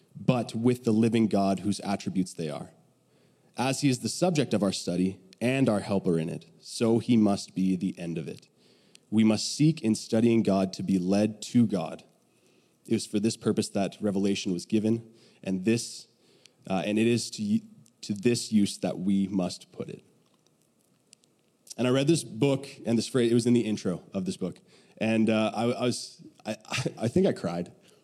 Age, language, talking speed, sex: 20-39, English, 195 wpm, male